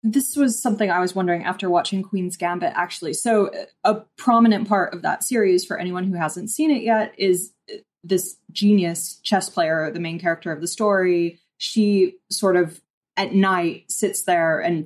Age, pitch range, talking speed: 20-39, 170-205 Hz, 180 wpm